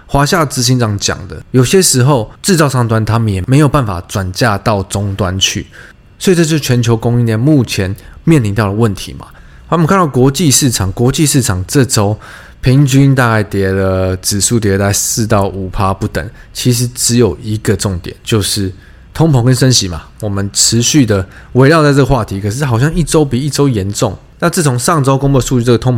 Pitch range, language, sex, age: 105-145 Hz, Chinese, male, 20-39